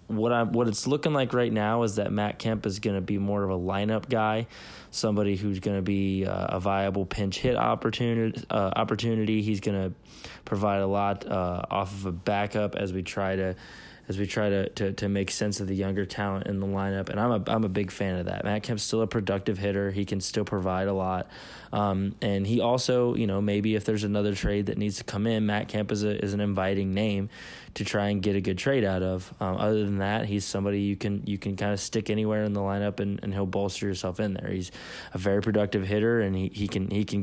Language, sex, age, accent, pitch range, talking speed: English, male, 20-39, American, 100-110 Hz, 245 wpm